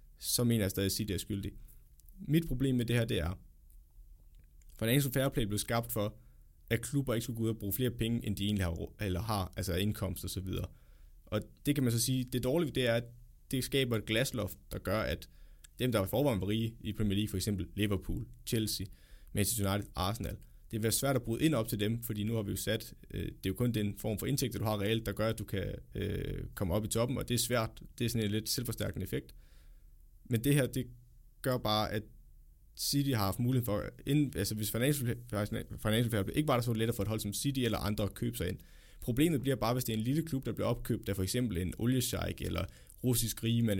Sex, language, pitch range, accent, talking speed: male, Danish, 100-125 Hz, native, 230 wpm